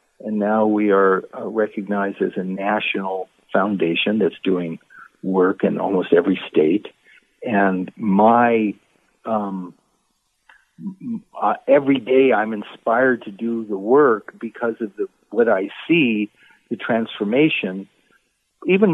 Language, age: English, 60-79